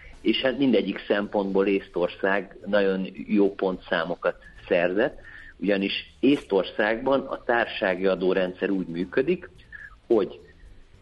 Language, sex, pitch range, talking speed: Hungarian, male, 95-120 Hz, 95 wpm